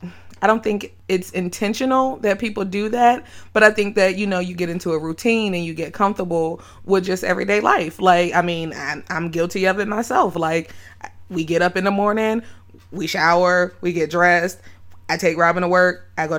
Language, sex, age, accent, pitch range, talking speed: English, female, 20-39, American, 165-195 Hz, 205 wpm